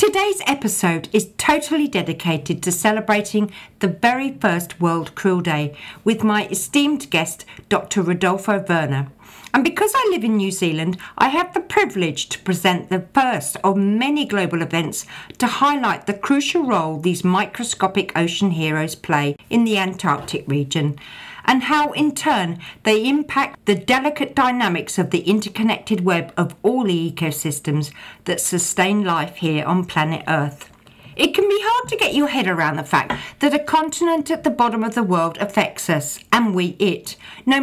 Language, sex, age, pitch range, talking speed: English, female, 60-79, 170-250 Hz, 165 wpm